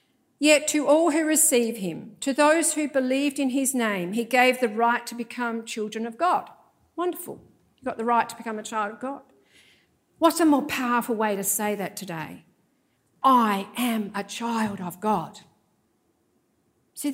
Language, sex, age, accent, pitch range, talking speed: English, female, 50-69, Australian, 235-285 Hz, 170 wpm